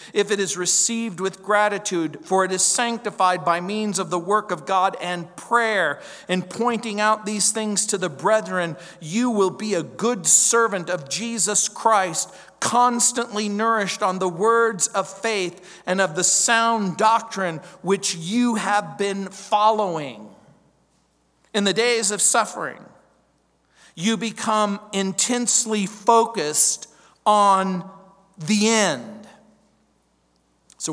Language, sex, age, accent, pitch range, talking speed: English, male, 50-69, American, 180-220 Hz, 130 wpm